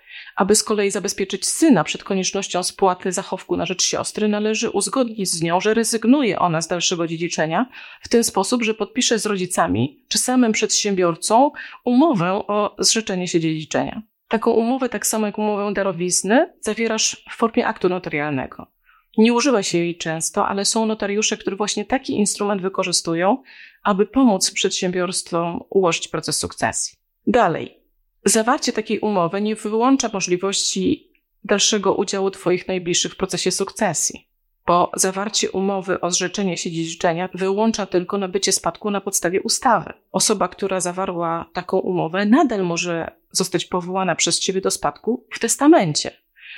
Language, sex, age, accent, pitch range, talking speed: Polish, female, 30-49, native, 180-220 Hz, 140 wpm